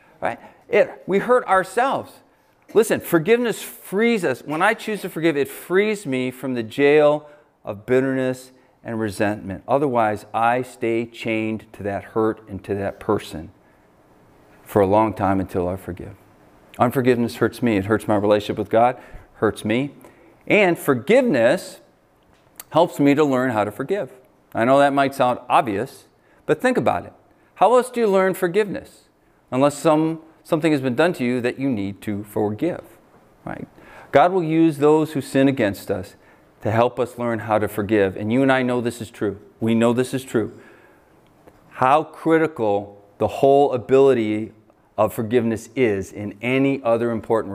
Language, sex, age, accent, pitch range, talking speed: English, male, 40-59, American, 110-150 Hz, 165 wpm